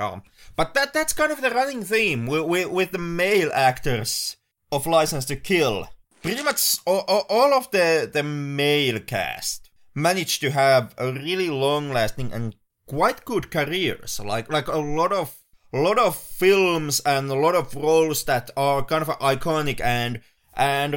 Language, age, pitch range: English, 30-49, 125-160 Hz